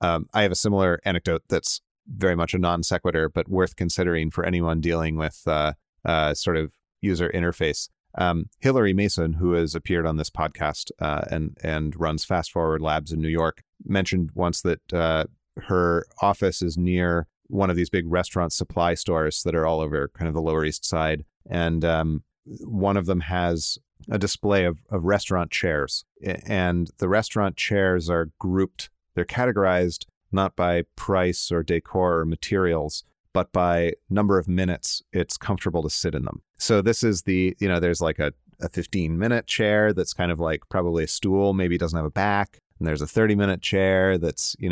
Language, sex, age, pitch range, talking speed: English, male, 30-49, 80-95 Hz, 190 wpm